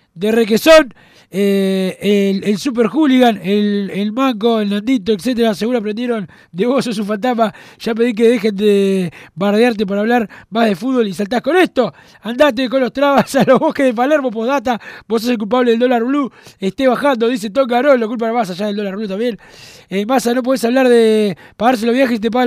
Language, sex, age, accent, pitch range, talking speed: Spanish, male, 20-39, Argentinian, 195-255 Hz, 210 wpm